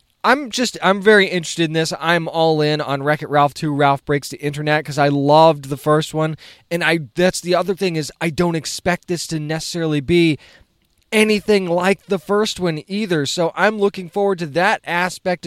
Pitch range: 150-200 Hz